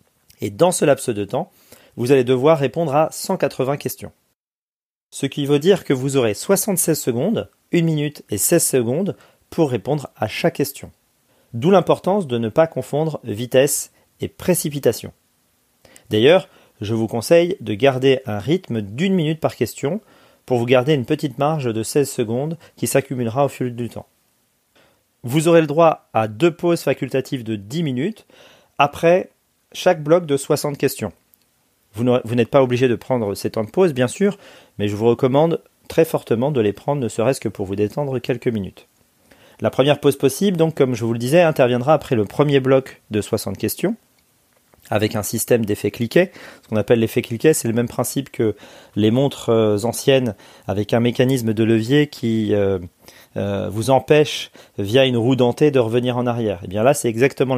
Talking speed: 180 wpm